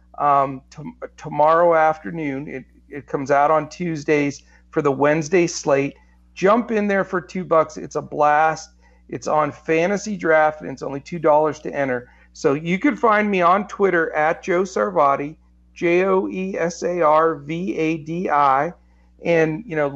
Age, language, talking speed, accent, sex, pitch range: 50-69, English, 140 wpm, American, male, 135-175 Hz